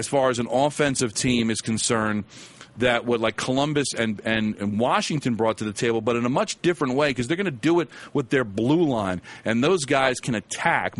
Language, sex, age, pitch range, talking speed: English, male, 40-59, 115-135 Hz, 225 wpm